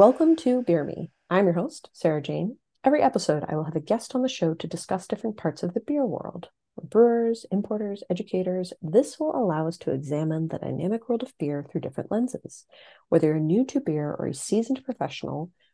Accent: American